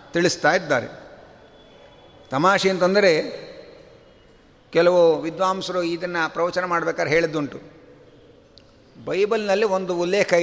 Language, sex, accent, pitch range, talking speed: Kannada, male, native, 180-240 Hz, 75 wpm